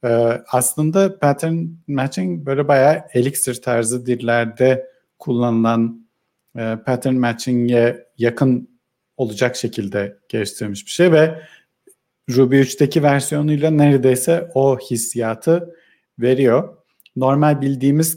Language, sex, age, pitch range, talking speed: Turkish, male, 50-69, 120-150 Hz, 95 wpm